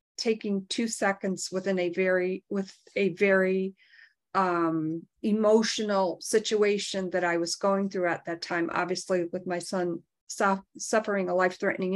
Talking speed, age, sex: 135 wpm, 40-59, female